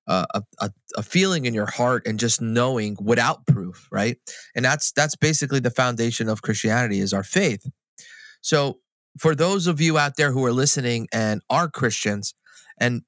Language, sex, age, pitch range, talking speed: English, male, 30-49, 115-155 Hz, 175 wpm